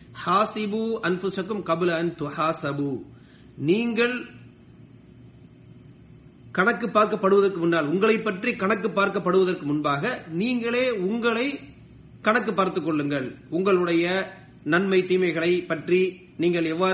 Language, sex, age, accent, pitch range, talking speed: English, male, 30-49, Indian, 165-215 Hz, 60 wpm